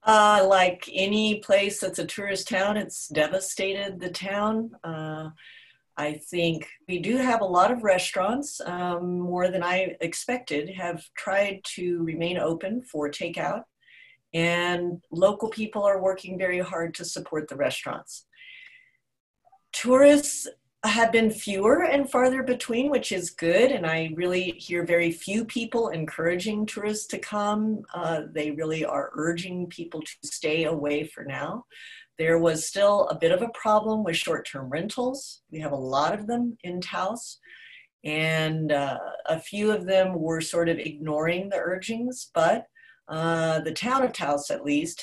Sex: female